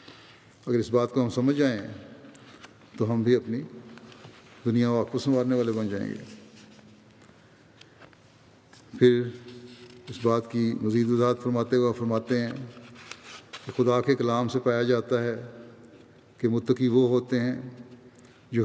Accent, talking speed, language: Indian, 130 wpm, English